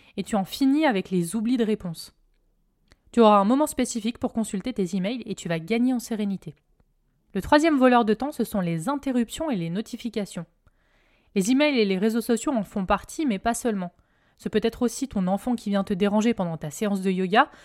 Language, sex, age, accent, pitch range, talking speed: French, female, 20-39, French, 200-255 Hz, 215 wpm